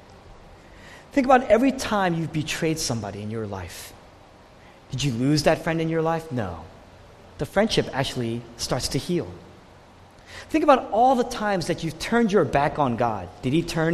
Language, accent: English, American